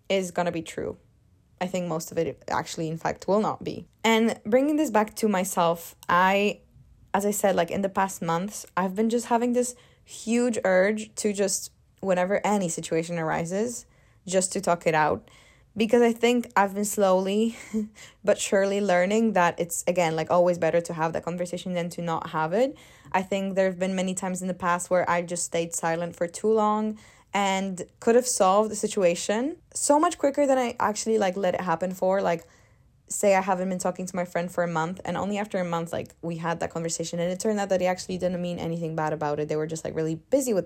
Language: English